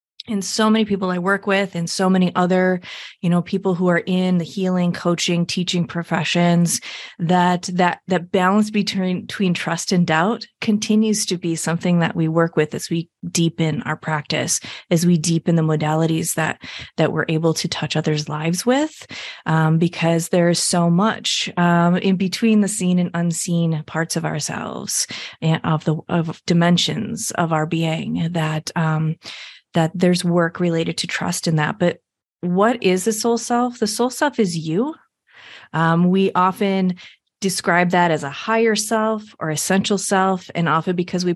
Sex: female